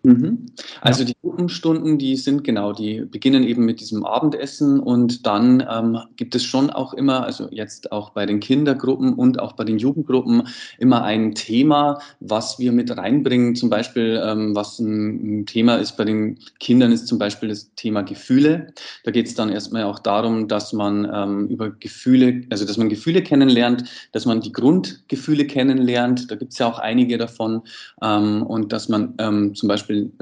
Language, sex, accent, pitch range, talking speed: German, male, German, 110-135 Hz, 180 wpm